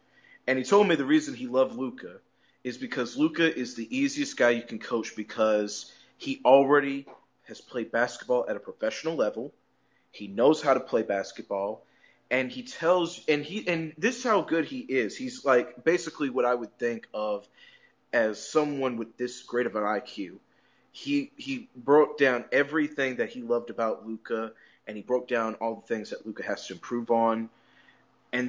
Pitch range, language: 120-200 Hz, English